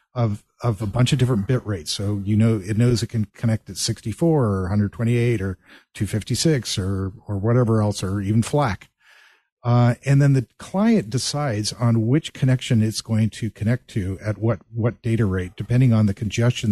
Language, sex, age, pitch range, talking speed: English, male, 50-69, 105-125 Hz, 185 wpm